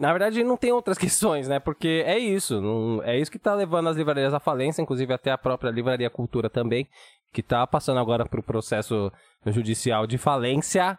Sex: male